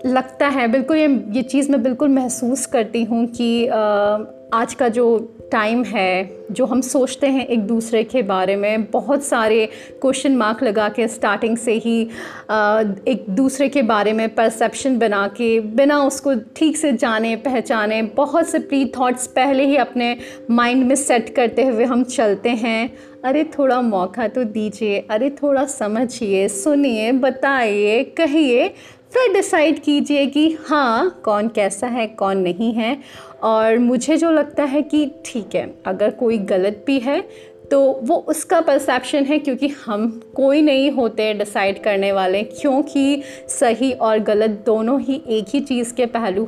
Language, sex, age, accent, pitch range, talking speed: Hindi, female, 30-49, native, 220-275 Hz, 160 wpm